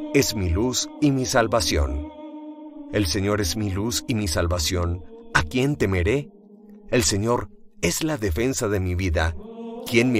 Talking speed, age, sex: 160 wpm, 40-59, male